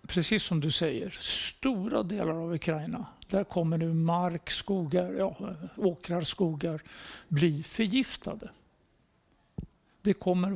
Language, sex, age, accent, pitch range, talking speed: Swedish, male, 60-79, native, 165-200 Hz, 115 wpm